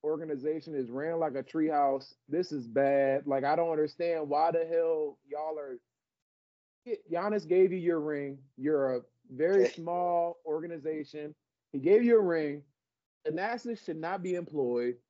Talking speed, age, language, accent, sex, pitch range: 150 wpm, 20-39, English, American, male, 140-200 Hz